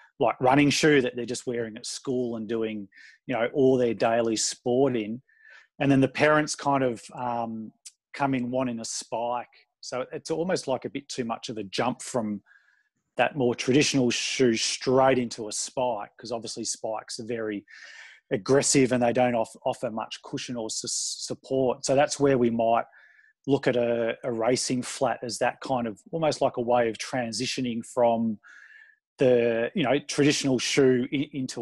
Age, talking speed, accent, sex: 30-49, 175 wpm, Australian, male